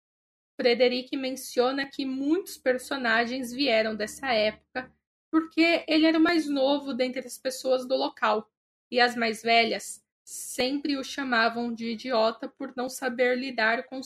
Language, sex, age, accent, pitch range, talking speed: Portuguese, female, 10-29, Brazilian, 240-285 Hz, 140 wpm